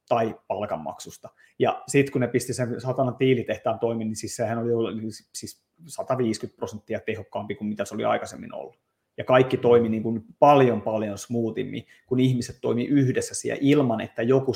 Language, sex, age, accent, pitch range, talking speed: Finnish, male, 30-49, native, 115-140 Hz, 165 wpm